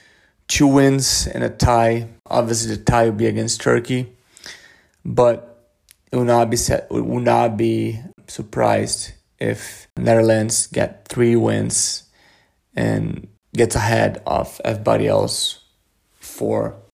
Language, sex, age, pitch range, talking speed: English, male, 30-49, 115-130 Hz, 120 wpm